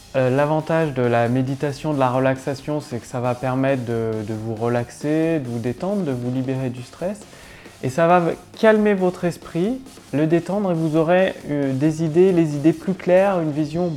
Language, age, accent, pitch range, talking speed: French, 20-39, French, 130-175 Hz, 190 wpm